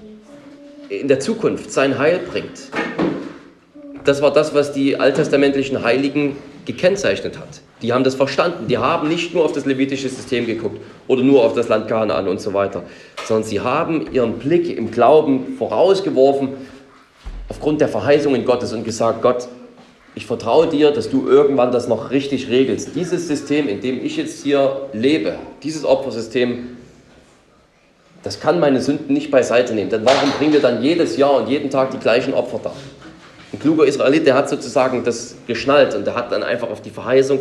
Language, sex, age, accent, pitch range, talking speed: German, male, 30-49, German, 120-150 Hz, 175 wpm